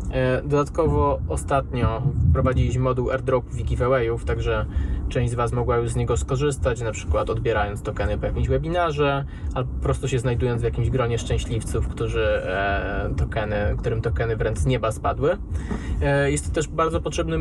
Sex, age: male, 20-39